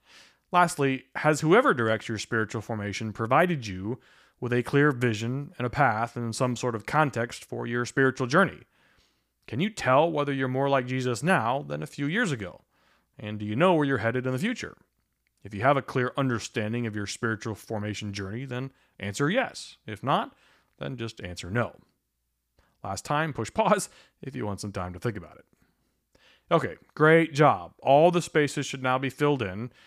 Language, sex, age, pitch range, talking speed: English, male, 30-49, 105-140 Hz, 185 wpm